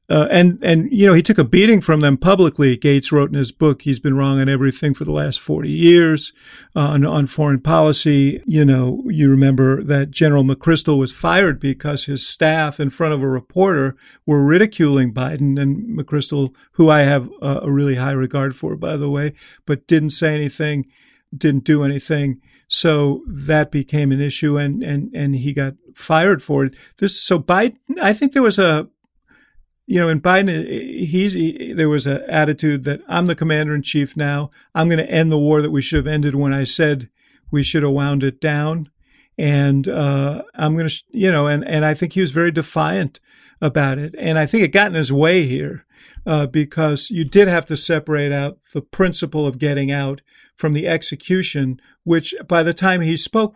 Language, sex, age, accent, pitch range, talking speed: English, male, 50-69, American, 140-165 Hz, 200 wpm